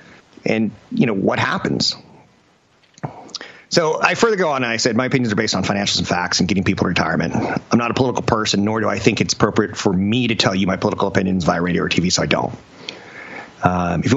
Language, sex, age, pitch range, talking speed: English, male, 30-49, 100-130 Hz, 235 wpm